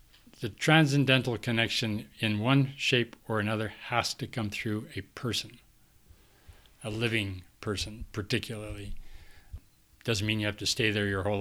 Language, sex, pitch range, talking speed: English, male, 100-120 Hz, 140 wpm